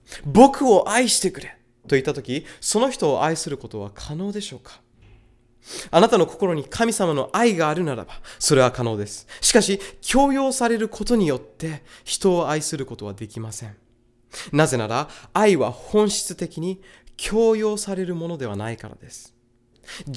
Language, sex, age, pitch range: Japanese, male, 20-39, 120-190 Hz